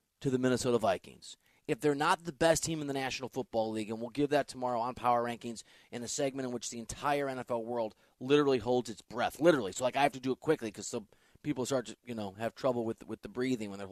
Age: 30-49